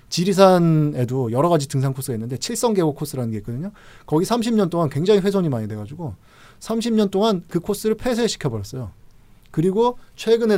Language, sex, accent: Korean, male, native